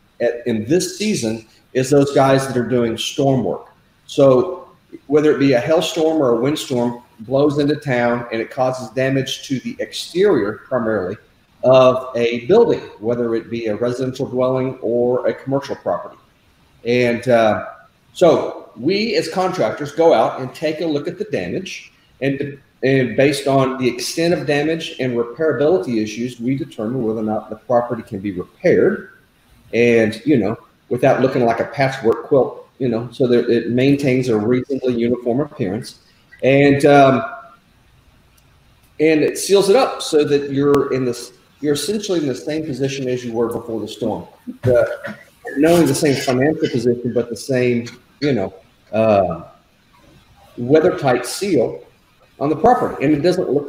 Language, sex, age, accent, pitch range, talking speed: English, male, 40-59, American, 120-145 Hz, 165 wpm